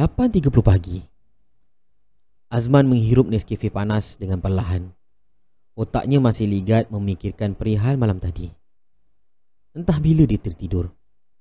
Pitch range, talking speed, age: 95-130 Hz, 95 wpm, 30-49